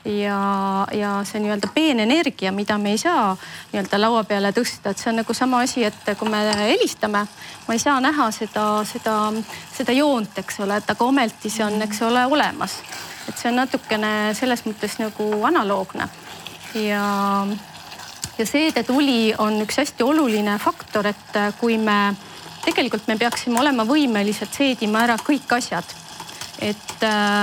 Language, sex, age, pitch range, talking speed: English, female, 30-49, 210-250 Hz, 155 wpm